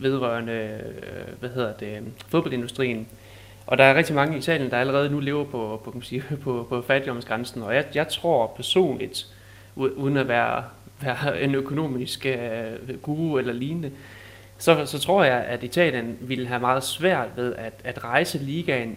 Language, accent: Danish, native